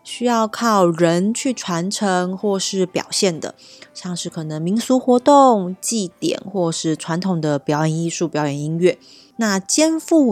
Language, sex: Chinese, female